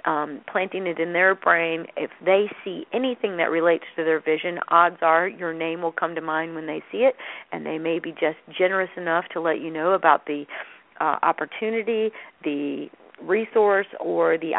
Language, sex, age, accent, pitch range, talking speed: English, female, 40-59, American, 165-200 Hz, 190 wpm